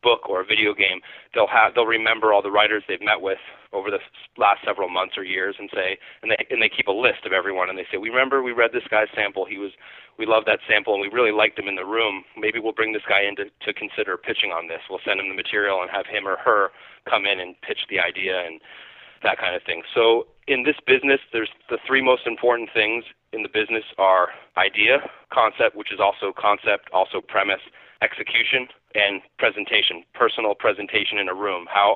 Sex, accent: male, American